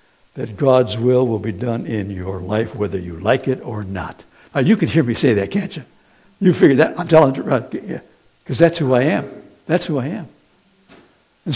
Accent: American